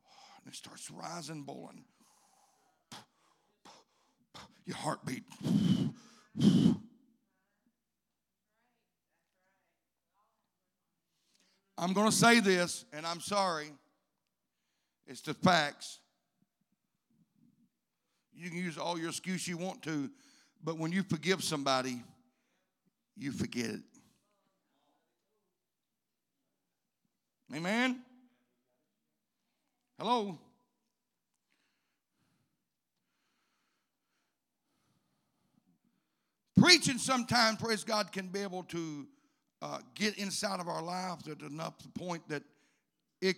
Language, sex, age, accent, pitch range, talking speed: English, male, 60-79, American, 175-240 Hz, 75 wpm